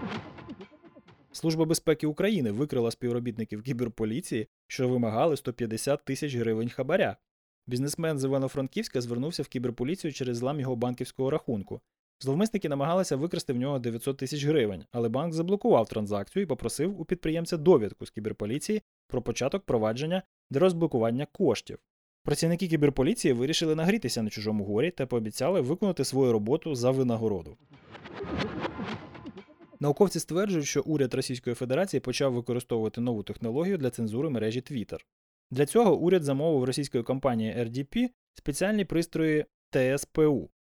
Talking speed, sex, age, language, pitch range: 125 wpm, male, 20-39, Ukrainian, 120-165 Hz